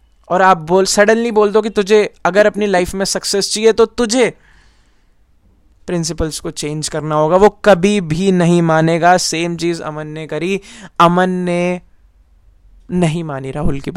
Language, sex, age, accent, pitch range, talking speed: Hindi, male, 20-39, native, 150-200 Hz, 165 wpm